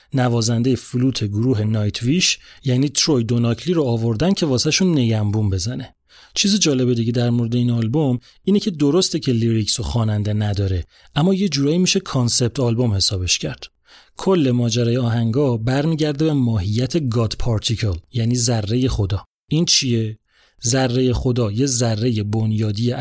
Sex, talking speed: male, 145 wpm